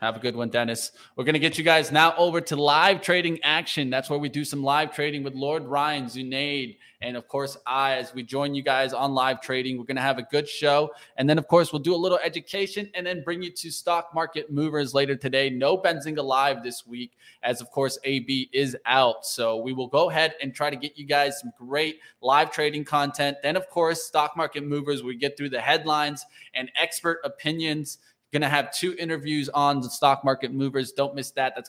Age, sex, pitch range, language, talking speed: 20-39, male, 135-160 Hz, English, 225 wpm